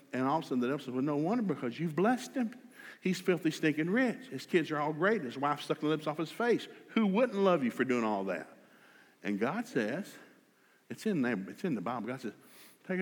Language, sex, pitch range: English, male, 155-230 Hz